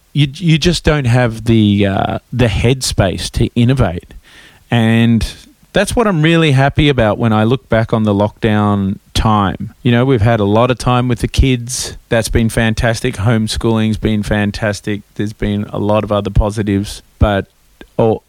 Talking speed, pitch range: 170 wpm, 100-125 Hz